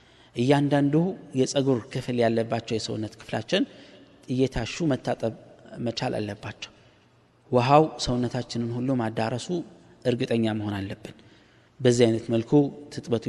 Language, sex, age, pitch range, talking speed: Amharic, male, 20-39, 115-145 Hz, 90 wpm